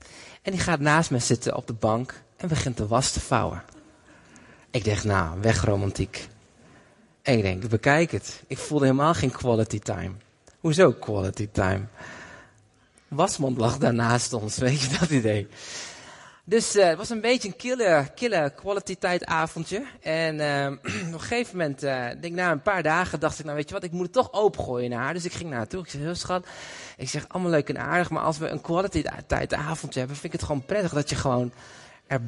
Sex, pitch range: male, 130-180 Hz